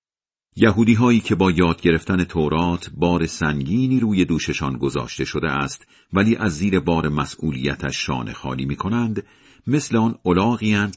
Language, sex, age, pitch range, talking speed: Persian, male, 50-69, 75-115 Hz, 135 wpm